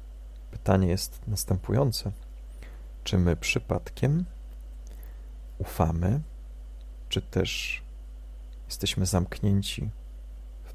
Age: 40-59